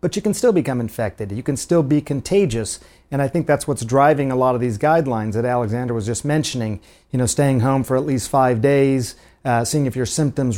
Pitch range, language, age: 130-155 Hz, English, 40-59